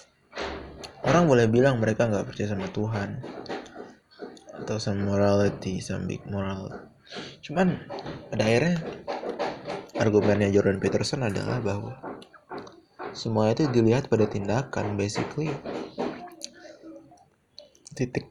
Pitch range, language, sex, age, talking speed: 105-135 Hz, Indonesian, male, 20-39, 95 wpm